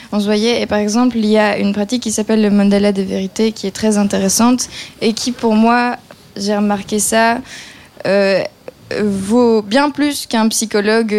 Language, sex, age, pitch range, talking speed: French, female, 20-39, 205-230 Hz, 180 wpm